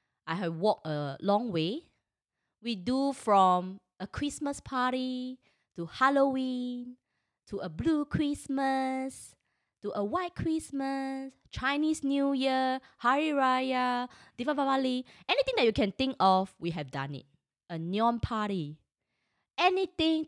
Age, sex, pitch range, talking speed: 20-39, female, 170-260 Hz, 125 wpm